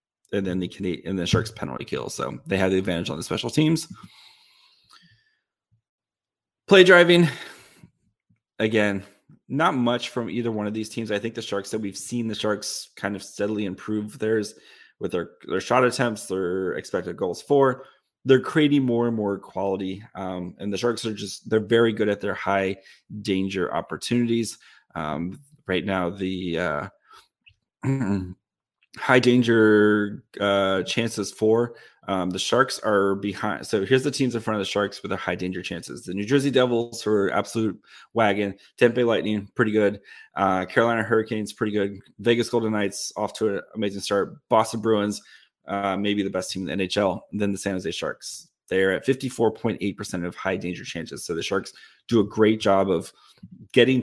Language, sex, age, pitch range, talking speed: English, male, 20-39, 95-115 Hz, 170 wpm